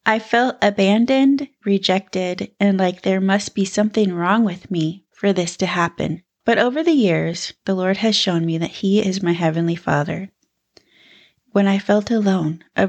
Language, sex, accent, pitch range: English, female, American, 175-210 Hz